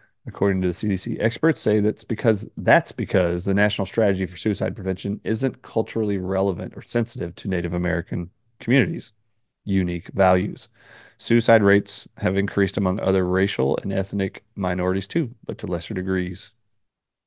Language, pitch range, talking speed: English, 95-110 Hz, 145 wpm